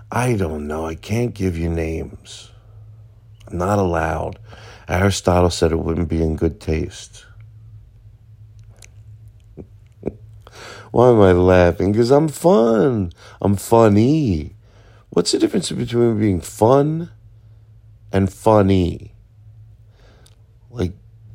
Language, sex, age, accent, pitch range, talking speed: English, male, 50-69, American, 90-110 Hz, 105 wpm